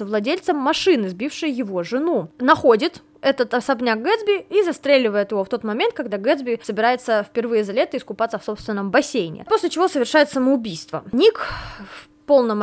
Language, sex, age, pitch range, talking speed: Russian, female, 20-39, 210-310 Hz, 150 wpm